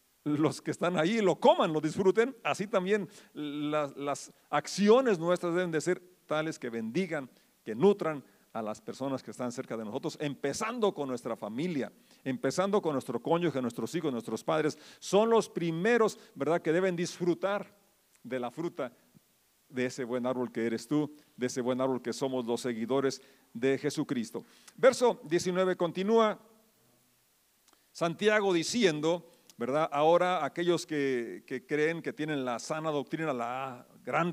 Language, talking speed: Spanish, 150 wpm